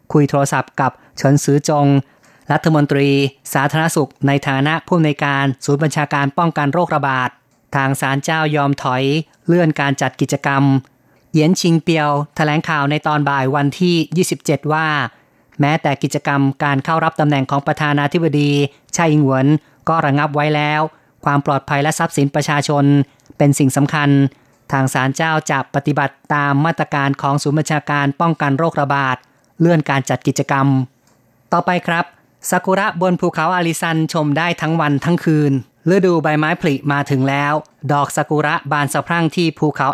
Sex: female